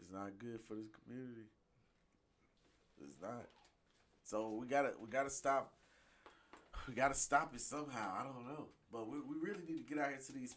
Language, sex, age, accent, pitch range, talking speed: English, male, 20-39, American, 110-140 Hz, 185 wpm